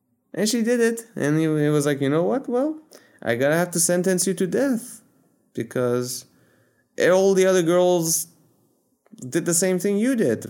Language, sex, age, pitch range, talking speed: English, male, 20-39, 115-190 Hz, 175 wpm